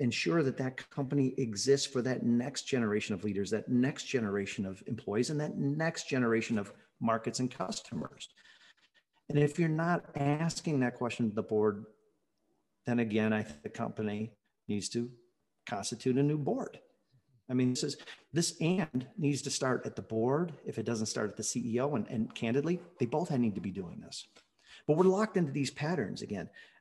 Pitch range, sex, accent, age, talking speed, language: 120-155 Hz, male, American, 50-69, 185 wpm, English